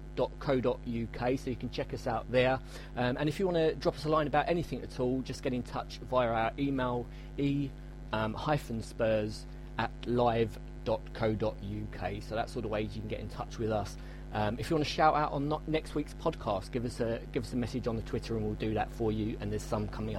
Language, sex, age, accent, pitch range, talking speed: English, male, 30-49, British, 120-150 Hz, 225 wpm